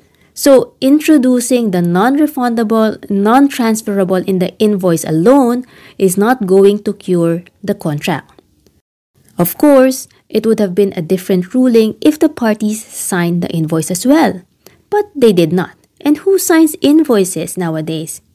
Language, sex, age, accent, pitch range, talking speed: English, female, 20-39, Filipino, 185-255 Hz, 135 wpm